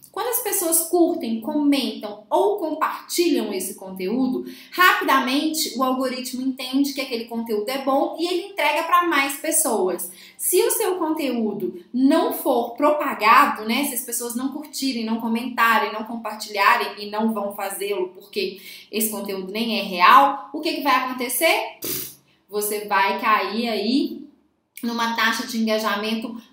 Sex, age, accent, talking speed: female, 20-39, Brazilian, 145 wpm